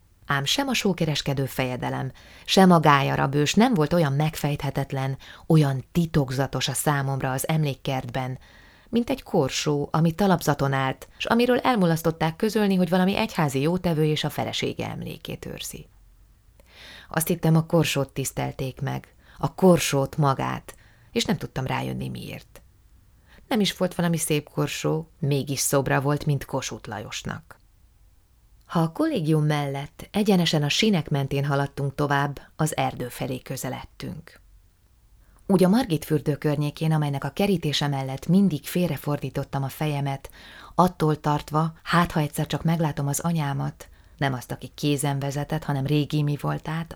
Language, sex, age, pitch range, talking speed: Hungarian, female, 20-39, 135-165 Hz, 140 wpm